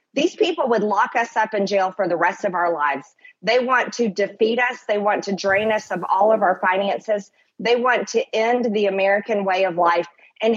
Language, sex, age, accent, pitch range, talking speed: English, female, 40-59, American, 185-225 Hz, 220 wpm